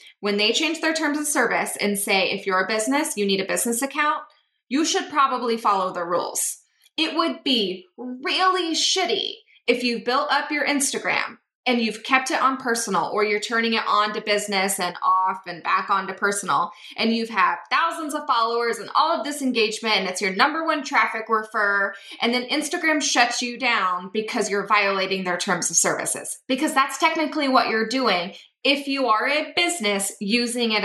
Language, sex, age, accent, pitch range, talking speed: English, female, 20-39, American, 210-290 Hz, 195 wpm